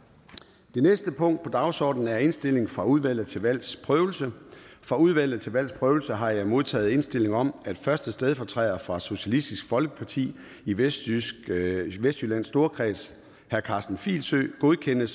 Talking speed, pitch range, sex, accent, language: 140 wpm, 110-140 Hz, male, native, Danish